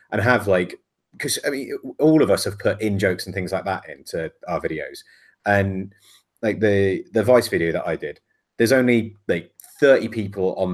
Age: 30-49